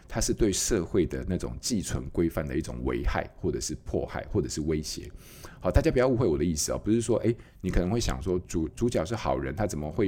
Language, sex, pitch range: Chinese, male, 80-105 Hz